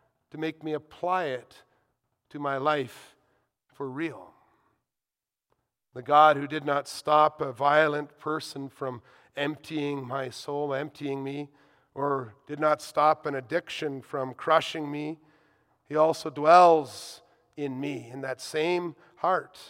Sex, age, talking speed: male, 40-59, 130 wpm